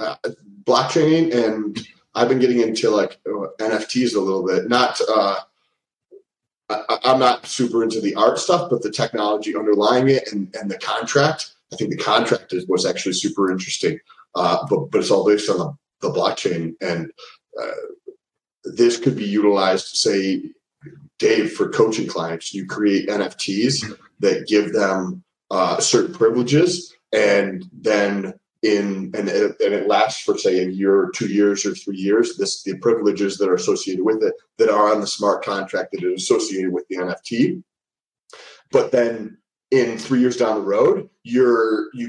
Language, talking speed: English, 170 wpm